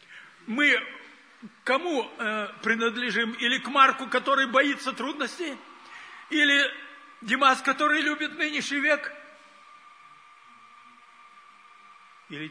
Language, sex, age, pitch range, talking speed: Russian, male, 60-79, 195-295 Hz, 75 wpm